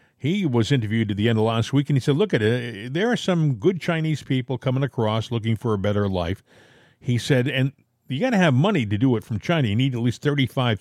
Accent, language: American, English